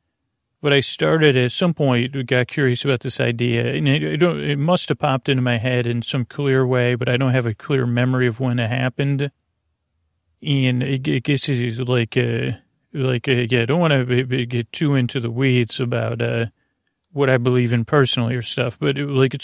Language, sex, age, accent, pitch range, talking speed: English, male, 40-59, American, 120-135 Hz, 210 wpm